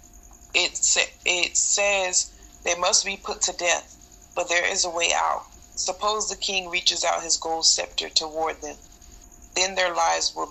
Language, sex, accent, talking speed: English, female, American, 165 wpm